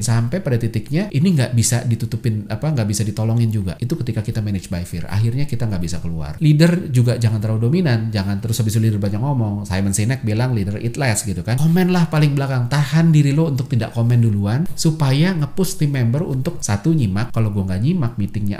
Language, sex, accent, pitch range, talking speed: Indonesian, male, native, 110-150 Hz, 205 wpm